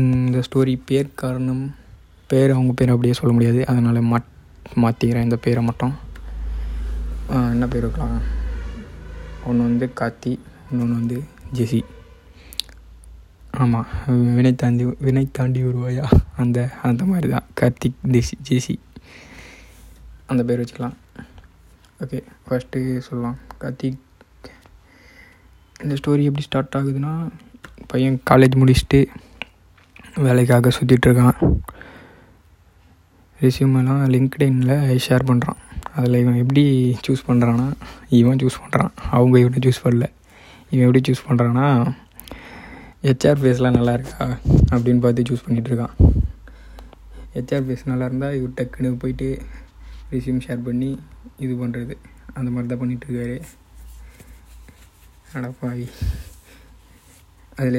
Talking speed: 105 wpm